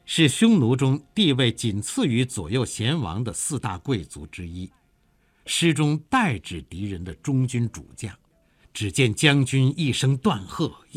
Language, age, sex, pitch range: Chinese, 60-79, male, 100-145 Hz